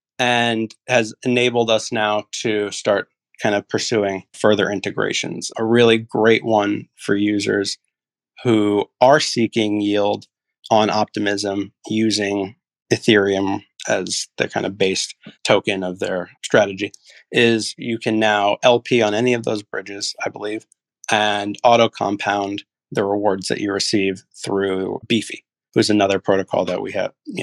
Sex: male